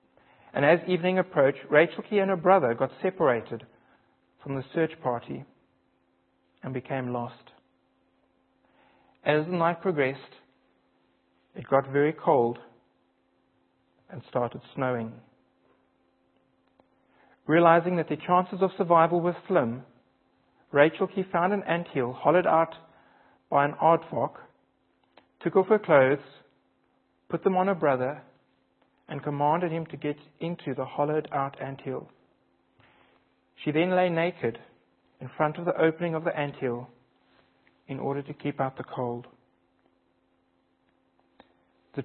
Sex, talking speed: male, 120 wpm